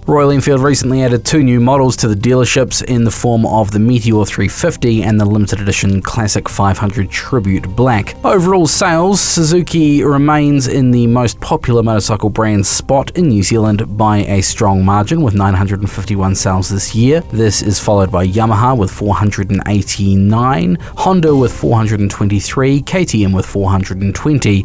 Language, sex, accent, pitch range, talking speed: English, male, Australian, 100-140 Hz, 150 wpm